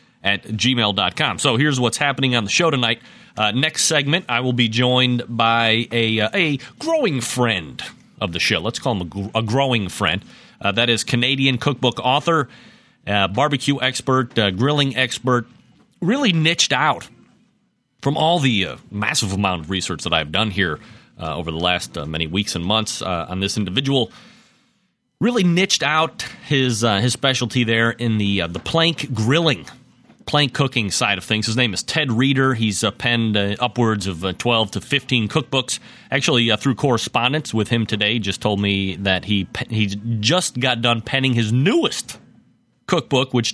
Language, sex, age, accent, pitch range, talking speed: English, male, 30-49, American, 105-135 Hz, 180 wpm